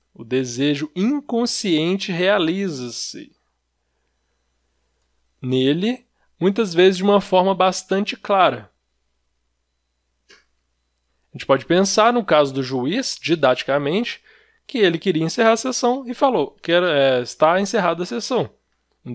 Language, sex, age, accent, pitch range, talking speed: Portuguese, male, 20-39, Brazilian, 130-205 Hz, 110 wpm